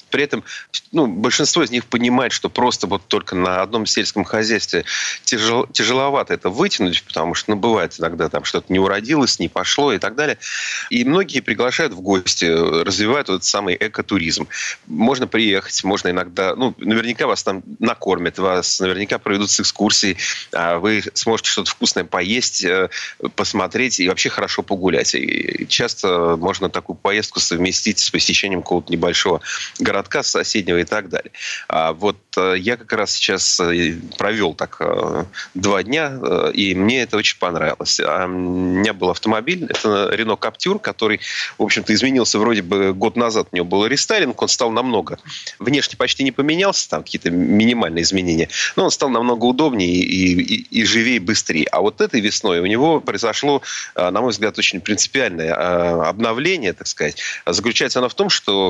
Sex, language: male, Russian